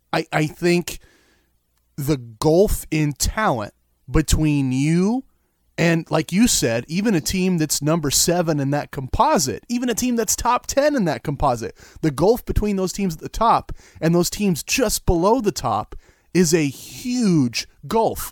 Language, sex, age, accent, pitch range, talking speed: English, male, 30-49, American, 125-175 Hz, 165 wpm